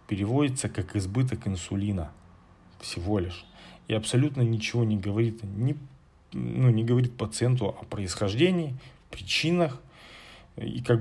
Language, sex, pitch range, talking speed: Russian, male, 100-120 Hz, 105 wpm